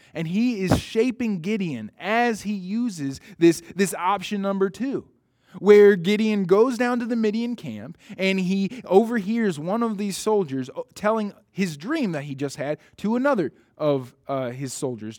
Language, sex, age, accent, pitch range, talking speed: English, male, 20-39, American, 155-220 Hz, 160 wpm